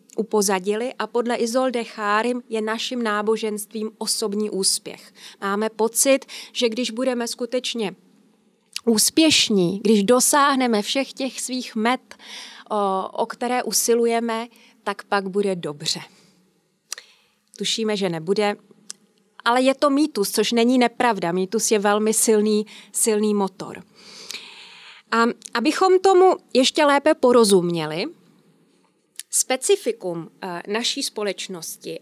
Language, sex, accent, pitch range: Czech, female, native, 205-245 Hz